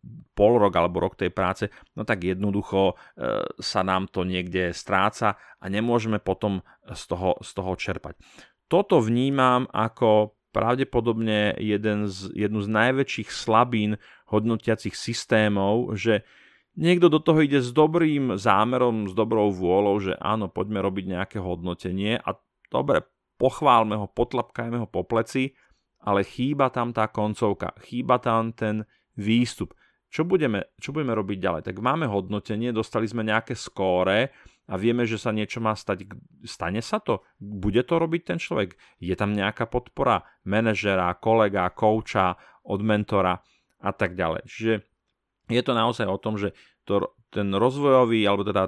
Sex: male